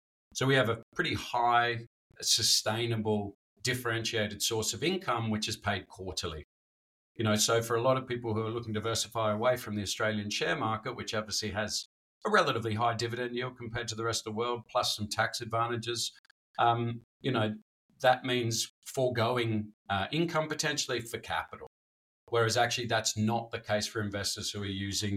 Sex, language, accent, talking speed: male, English, Australian, 180 wpm